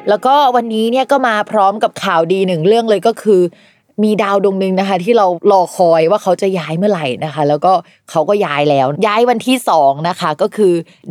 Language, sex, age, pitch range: Thai, female, 20-39, 165-215 Hz